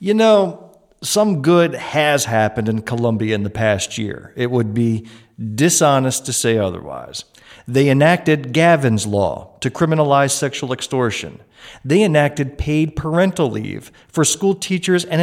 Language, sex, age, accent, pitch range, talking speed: English, male, 40-59, American, 125-180 Hz, 140 wpm